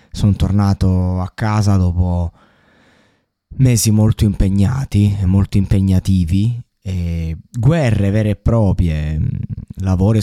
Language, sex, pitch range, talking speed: Italian, male, 90-110 Hz, 95 wpm